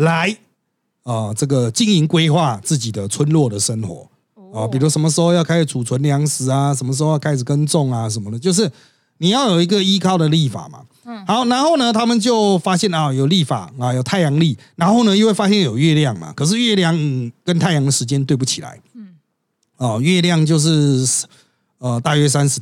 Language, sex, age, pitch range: Chinese, male, 30-49, 125-185 Hz